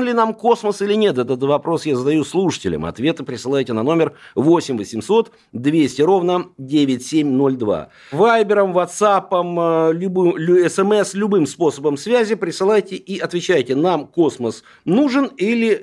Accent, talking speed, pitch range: native, 135 wpm, 140-195 Hz